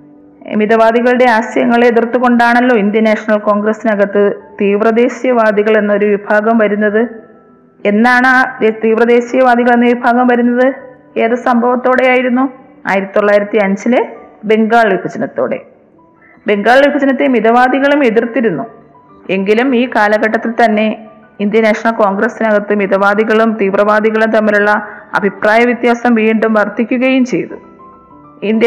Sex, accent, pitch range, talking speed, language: female, native, 205-245 Hz, 90 wpm, Malayalam